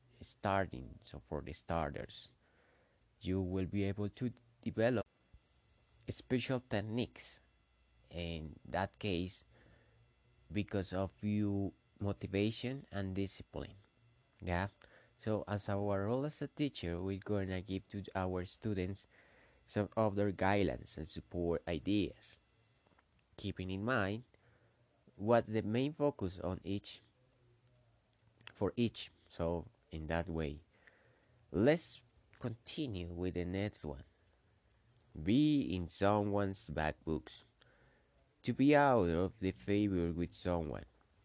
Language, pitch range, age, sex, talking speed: English, 90-115 Hz, 30-49, male, 115 wpm